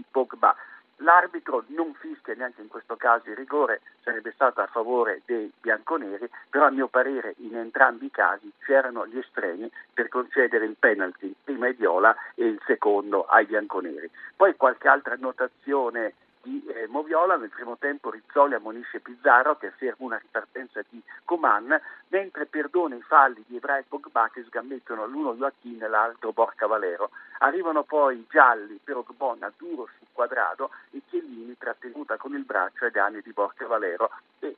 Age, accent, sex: 50-69, native, male